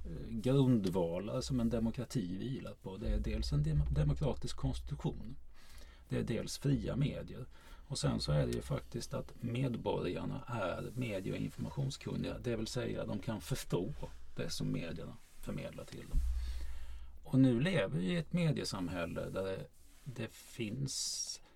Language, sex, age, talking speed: Swedish, male, 30-49, 155 wpm